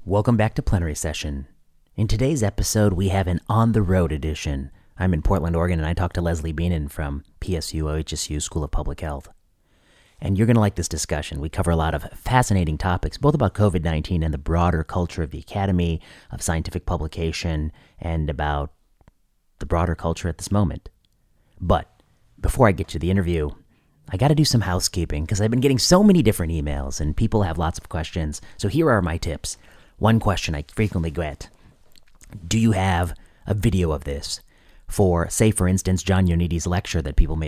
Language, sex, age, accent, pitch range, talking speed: English, male, 30-49, American, 80-100 Hz, 190 wpm